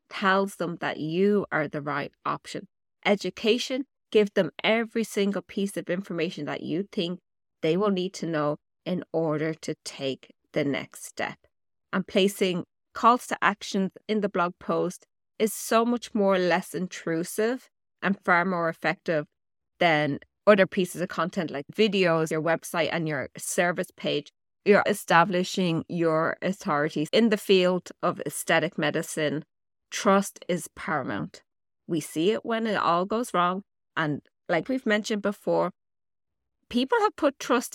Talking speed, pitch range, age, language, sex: 150 wpm, 160-205 Hz, 20-39, English, female